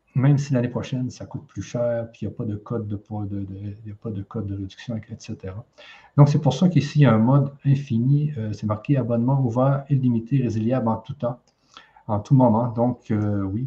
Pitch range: 110-140 Hz